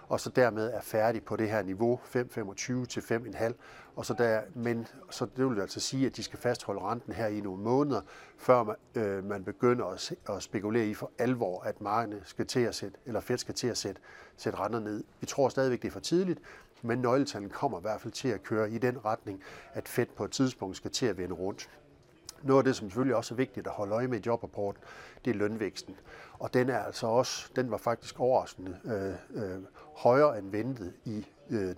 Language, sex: Danish, male